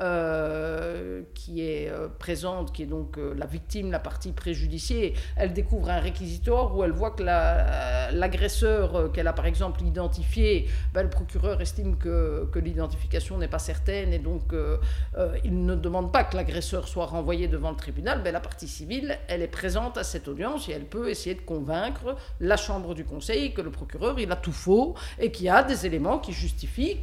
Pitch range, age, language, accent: 145-210 Hz, 50-69, French, French